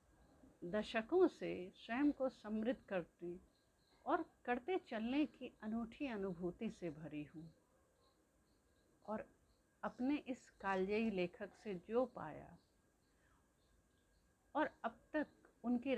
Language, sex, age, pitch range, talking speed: Hindi, female, 60-79, 180-255 Hz, 100 wpm